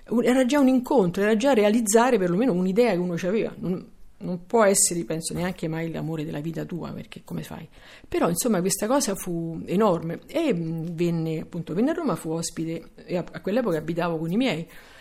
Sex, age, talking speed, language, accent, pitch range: female, 50-69, 195 wpm, Italian, native, 170-225 Hz